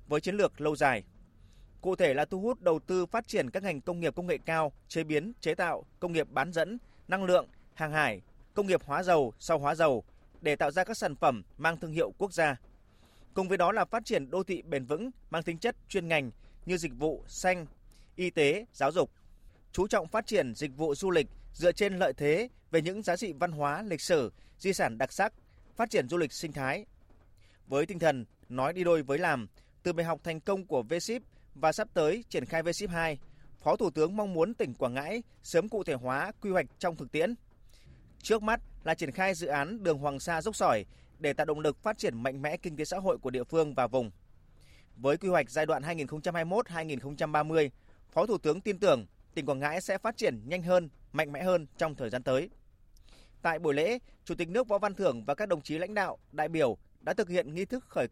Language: Vietnamese